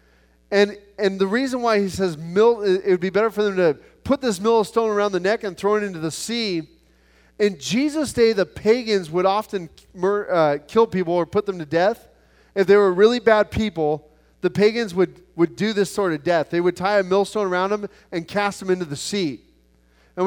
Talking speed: 215 wpm